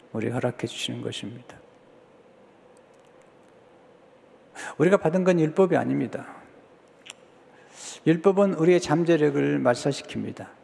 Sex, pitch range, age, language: male, 135-165 Hz, 60-79, Korean